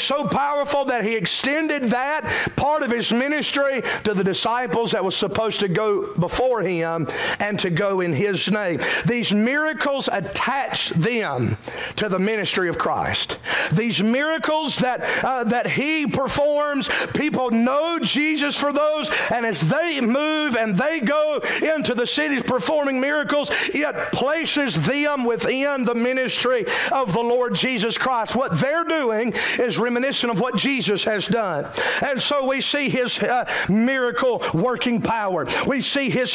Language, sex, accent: English, male, American